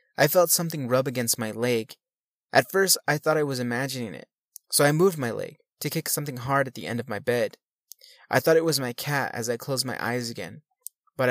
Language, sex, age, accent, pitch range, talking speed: English, male, 20-39, American, 120-150 Hz, 230 wpm